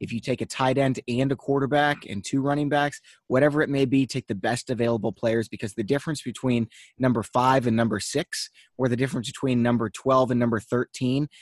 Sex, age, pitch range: male, 20-39, 115-145 Hz